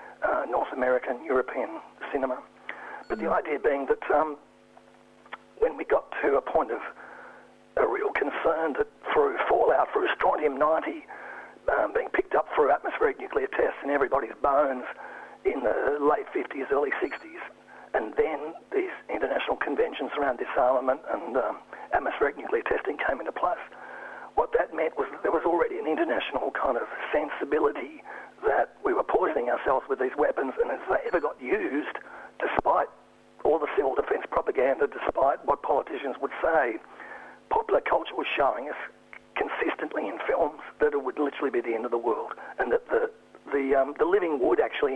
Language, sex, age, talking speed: English, male, 50-69, 160 wpm